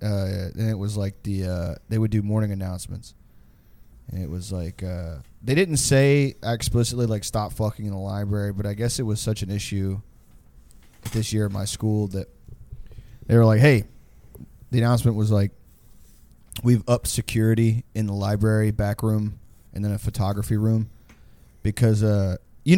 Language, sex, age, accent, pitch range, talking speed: English, male, 20-39, American, 100-125 Hz, 170 wpm